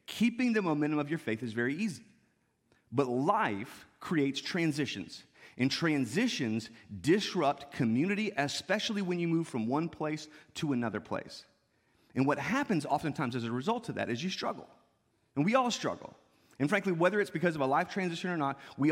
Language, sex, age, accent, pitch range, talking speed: English, male, 30-49, American, 120-170 Hz, 175 wpm